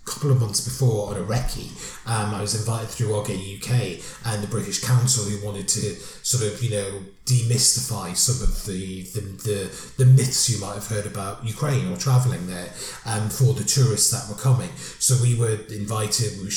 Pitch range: 105-130 Hz